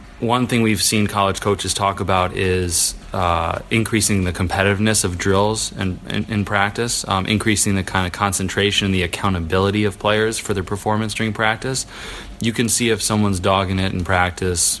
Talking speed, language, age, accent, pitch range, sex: 180 wpm, English, 20-39, American, 95-105 Hz, male